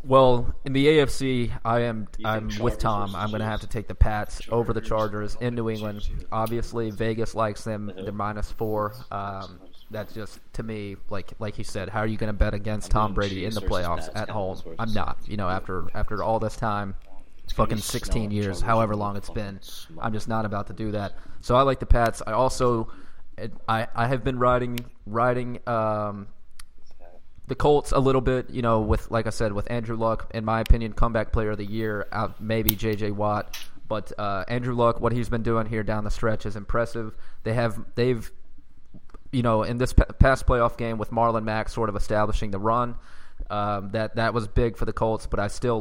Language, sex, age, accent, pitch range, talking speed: English, male, 20-39, American, 105-115 Hz, 205 wpm